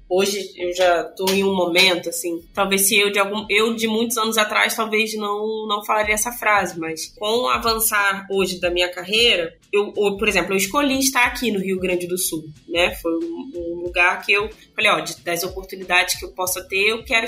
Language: Portuguese